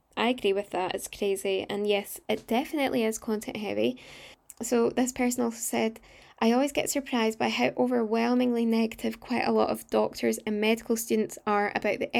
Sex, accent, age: female, British, 10-29